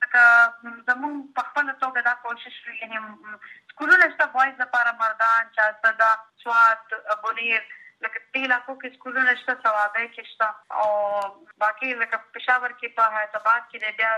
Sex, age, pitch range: female, 20-39, 220-265 Hz